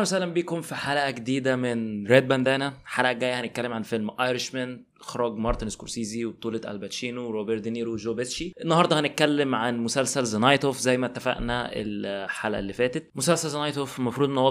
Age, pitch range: 20-39, 120-140 Hz